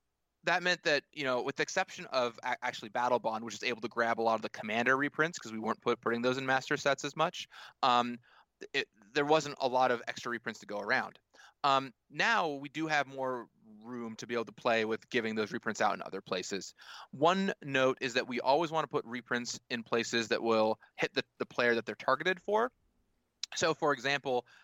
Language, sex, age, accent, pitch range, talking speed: English, male, 20-39, American, 115-150 Hz, 220 wpm